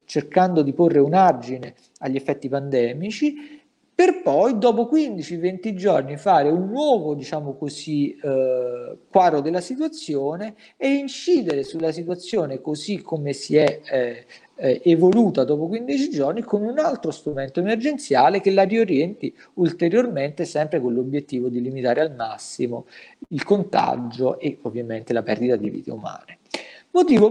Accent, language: native, Italian